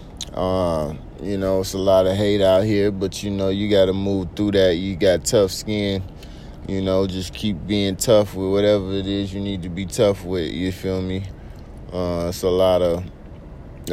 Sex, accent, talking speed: male, American, 205 wpm